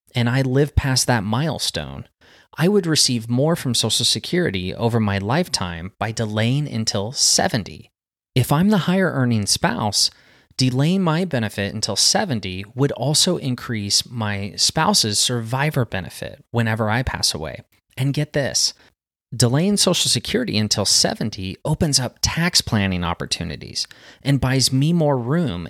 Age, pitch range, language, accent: 30-49, 105-150 Hz, English, American